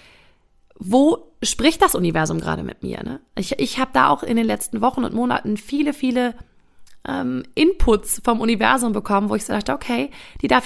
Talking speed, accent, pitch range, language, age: 180 wpm, German, 200-265 Hz, German, 30-49